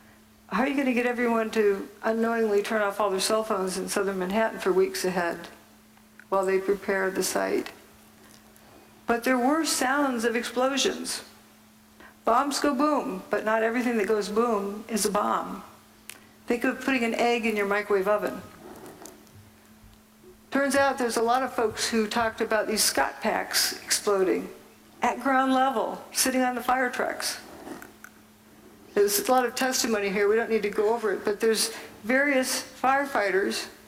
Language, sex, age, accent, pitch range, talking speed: English, female, 60-79, American, 200-255 Hz, 165 wpm